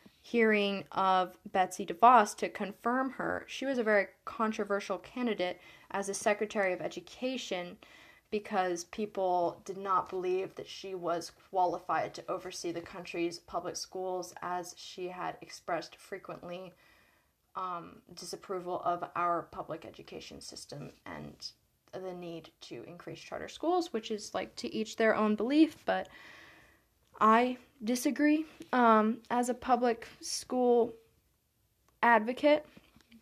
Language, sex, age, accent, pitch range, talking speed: English, female, 10-29, American, 185-240 Hz, 125 wpm